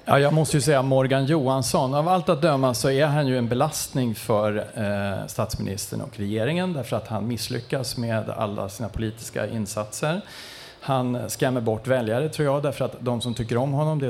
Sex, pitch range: male, 110-135 Hz